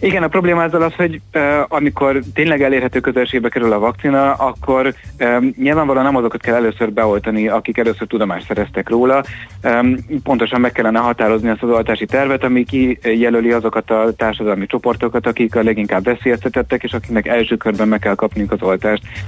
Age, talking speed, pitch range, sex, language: 30-49, 170 wpm, 110-125 Hz, male, Hungarian